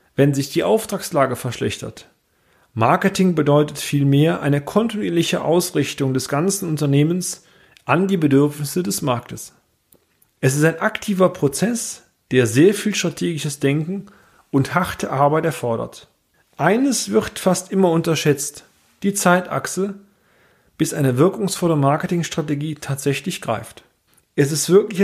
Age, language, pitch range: 40-59, German, 135-190 Hz